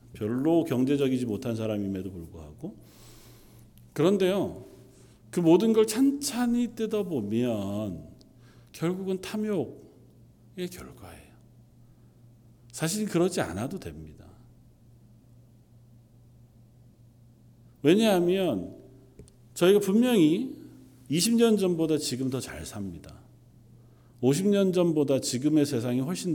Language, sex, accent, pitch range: Korean, male, native, 120-175 Hz